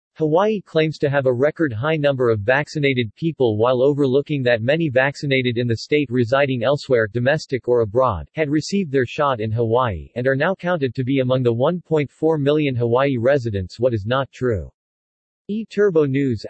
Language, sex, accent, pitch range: English, male, American, 120-150 Hz